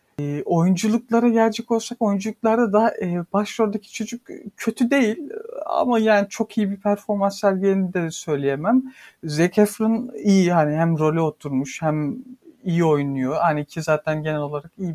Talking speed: 145 wpm